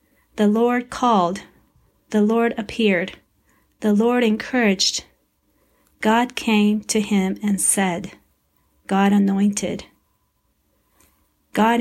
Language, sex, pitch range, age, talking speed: English, female, 195-230 Hz, 40-59, 90 wpm